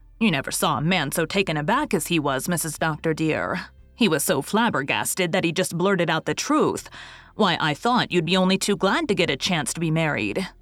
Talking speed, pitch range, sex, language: 225 wpm, 155-205 Hz, female, English